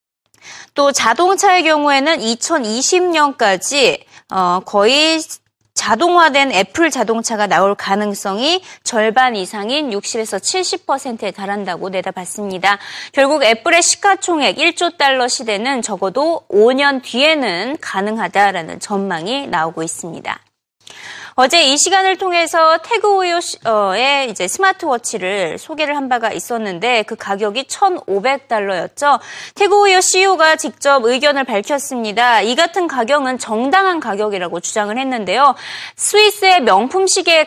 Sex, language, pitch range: female, Korean, 215-345 Hz